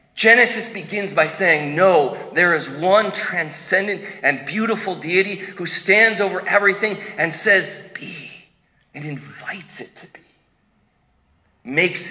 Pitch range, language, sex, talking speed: 130-200 Hz, English, male, 125 wpm